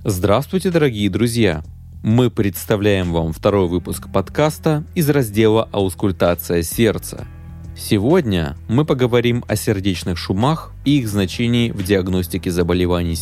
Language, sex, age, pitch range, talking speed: Russian, male, 20-39, 95-145 Hz, 115 wpm